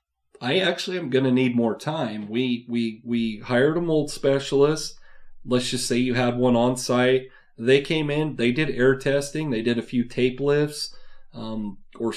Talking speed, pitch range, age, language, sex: 180 wpm, 120-145 Hz, 30-49, English, male